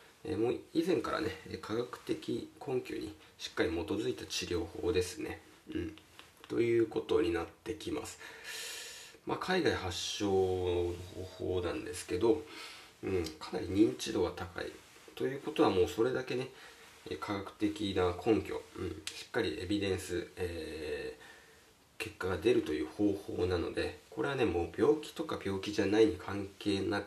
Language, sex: Japanese, male